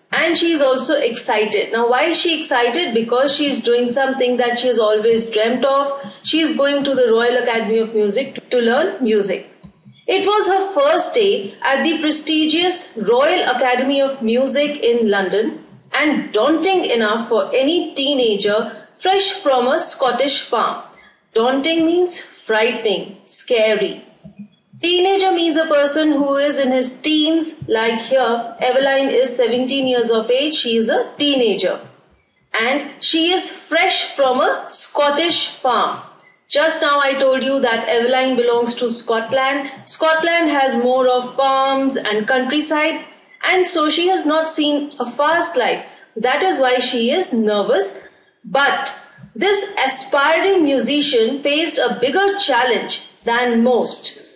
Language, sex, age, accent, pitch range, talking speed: English, female, 30-49, Indian, 240-315 Hz, 150 wpm